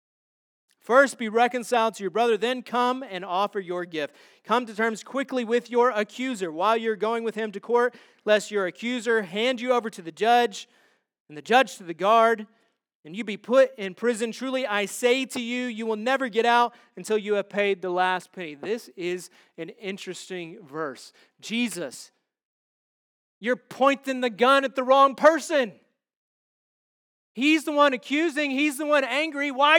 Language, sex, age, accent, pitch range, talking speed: English, male, 30-49, American, 200-255 Hz, 175 wpm